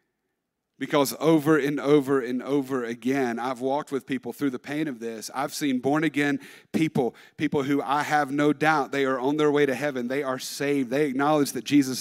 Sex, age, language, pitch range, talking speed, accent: male, 40-59, English, 130-155 Hz, 200 wpm, American